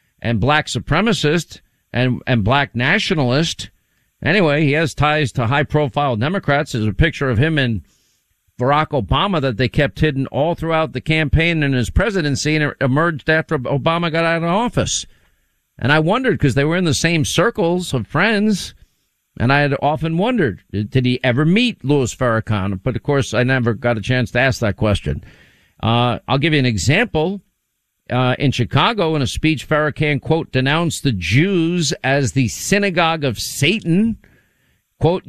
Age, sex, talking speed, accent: 50-69, male, 170 wpm, American